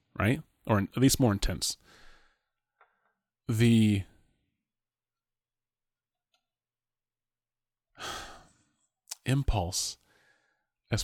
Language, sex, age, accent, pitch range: English, male, 30-49, American, 95-115 Hz